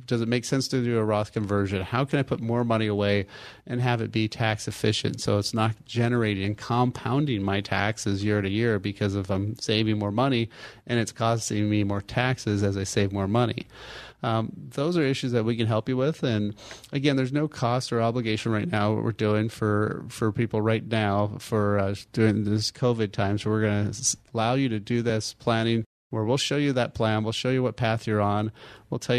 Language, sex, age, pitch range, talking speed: English, male, 30-49, 105-125 Hz, 220 wpm